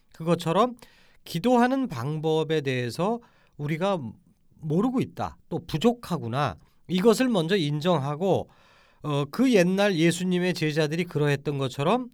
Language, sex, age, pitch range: Korean, male, 40-59, 130-195 Hz